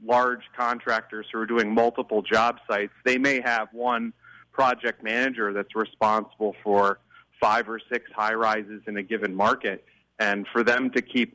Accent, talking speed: American, 160 wpm